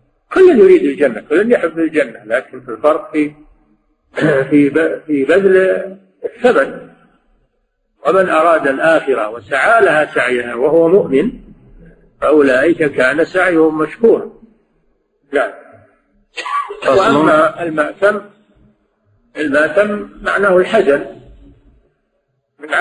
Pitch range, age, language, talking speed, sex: 140-175 Hz, 50-69, Arabic, 85 wpm, male